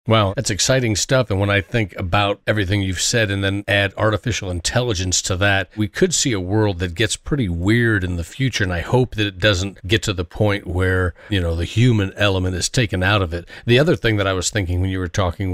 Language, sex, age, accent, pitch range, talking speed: English, male, 40-59, American, 90-110 Hz, 245 wpm